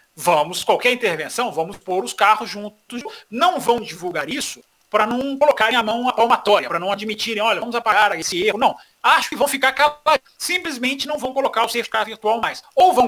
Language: Portuguese